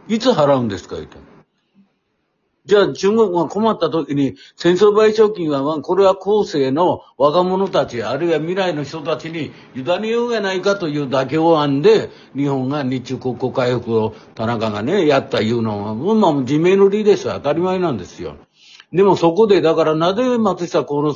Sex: male